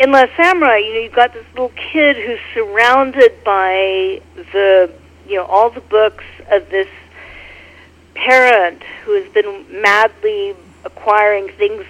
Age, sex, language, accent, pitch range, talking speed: 50-69, female, English, American, 190-310 Hz, 140 wpm